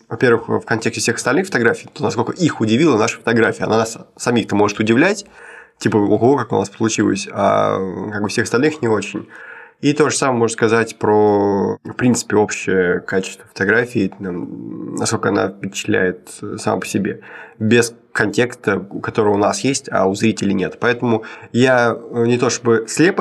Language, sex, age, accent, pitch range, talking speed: Russian, male, 20-39, native, 110-125 Hz, 165 wpm